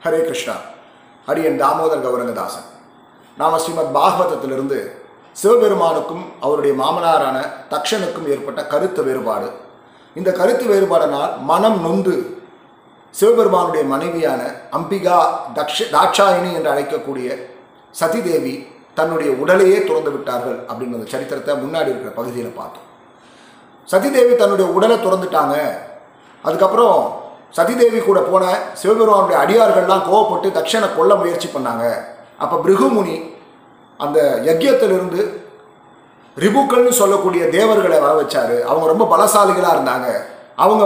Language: Tamil